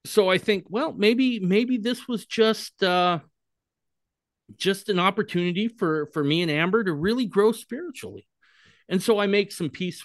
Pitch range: 120-190 Hz